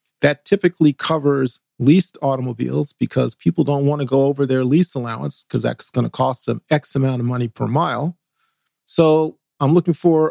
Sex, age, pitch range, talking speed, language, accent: male, 40-59, 130-160 Hz, 180 wpm, English, American